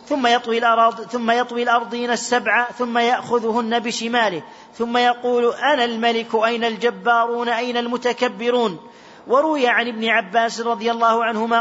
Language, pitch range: Arabic, 230-240 Hz